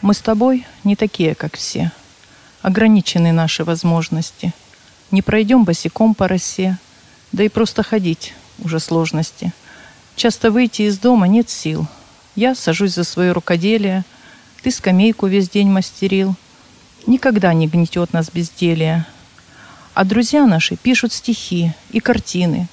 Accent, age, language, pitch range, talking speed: native, 40-59, Russian, 165-225 Hz, 130 wpm